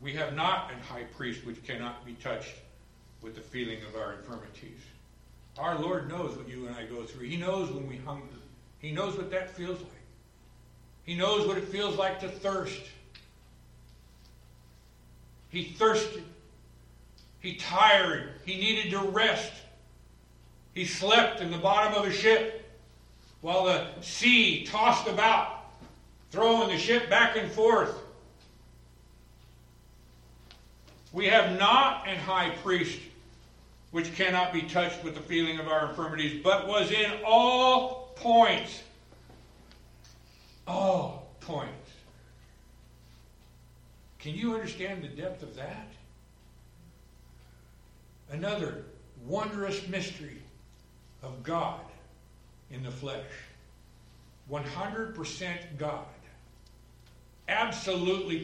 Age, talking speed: 60-79, 115 wpm